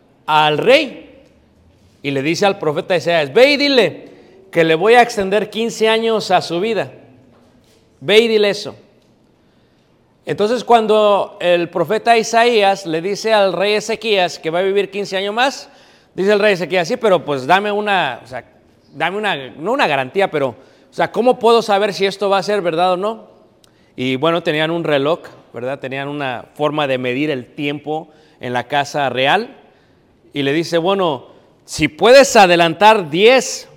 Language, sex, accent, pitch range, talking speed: Spanish, male, Mexican, 150-215 Hz, 170 wpm